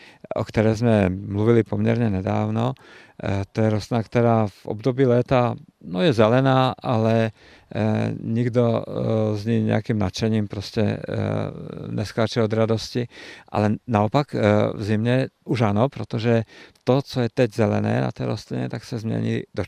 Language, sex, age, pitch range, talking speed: Czech, male, 50-69, 100-115 Hz, 135 wpm